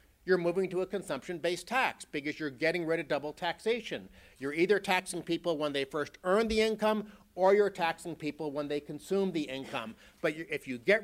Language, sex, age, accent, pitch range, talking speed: English, male, 60-79, American, 150-195 Hz, 195 wpm